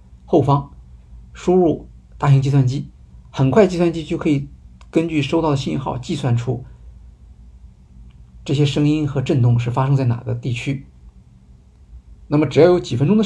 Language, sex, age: Chinese, male, 50-69